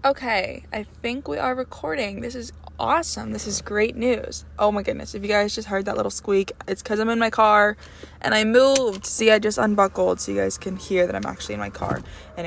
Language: English